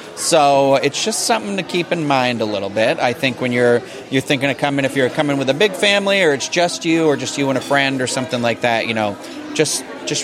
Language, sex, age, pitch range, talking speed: English, male, 30-49, 130-155 Hz, 280 wpm